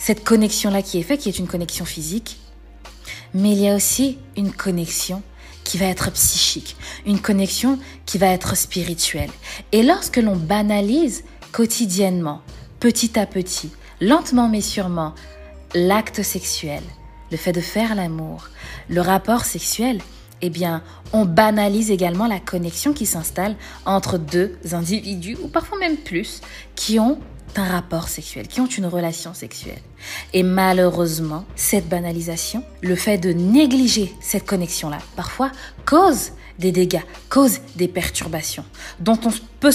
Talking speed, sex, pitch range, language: 140 wpm, female, 180-225 Hz, French